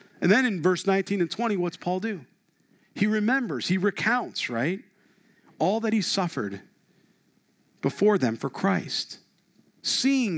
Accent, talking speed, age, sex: American, 140 wpm, 50-69, male